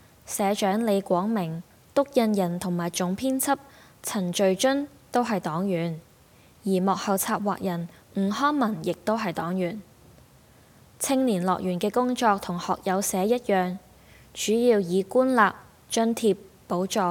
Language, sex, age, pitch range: Chinese, female, 20-39, 180-225 Hz